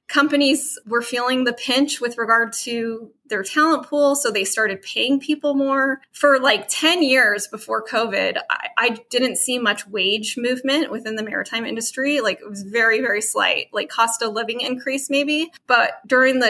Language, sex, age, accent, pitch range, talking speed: English, female, 20-39, American, 225-285 Hz, 180 wpm